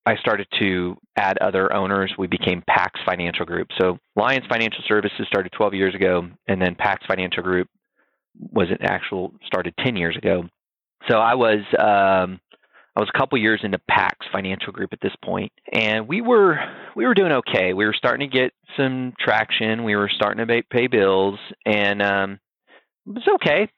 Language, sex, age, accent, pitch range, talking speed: English, male, 30-49, American, 95-115 Hz, 185 wpm